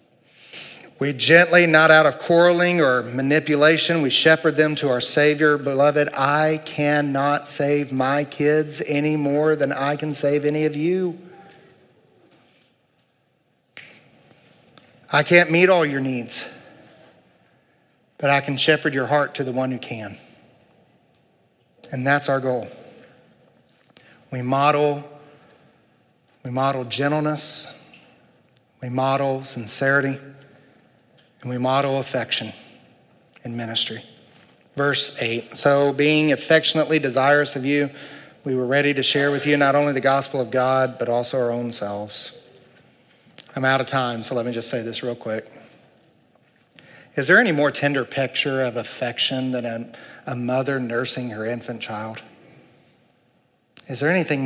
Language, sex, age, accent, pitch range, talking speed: English, male, 40-59, American, 125-150 Hz, 135 wpm